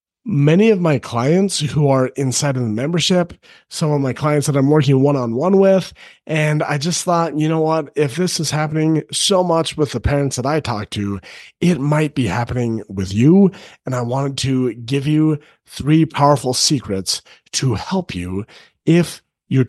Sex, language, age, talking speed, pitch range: male, English, 30-49, 180 wpm, 130-165 Hz